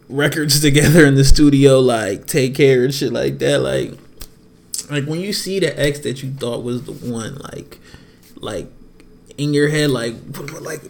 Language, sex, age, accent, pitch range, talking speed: English, male, 20-39, American, 130-160 Hz, 175 wpm